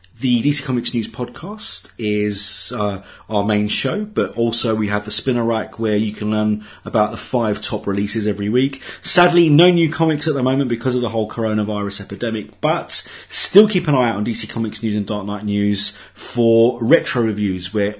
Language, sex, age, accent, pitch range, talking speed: English, male, 30-49, British, 105-130 Hz, 195 wpm